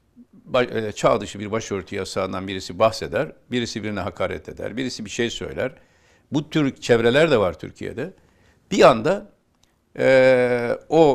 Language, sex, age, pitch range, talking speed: Turkish, male, 60-79, 100-145 Hz, 145 wpm